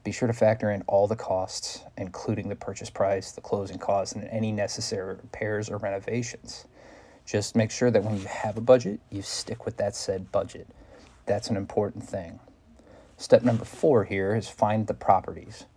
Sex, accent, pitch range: male, American, 100-115 Hz